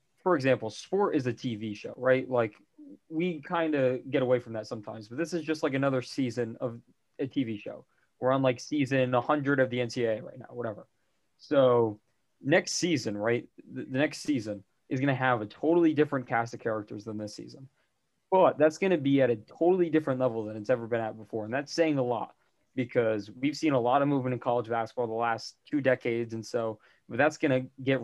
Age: 20-39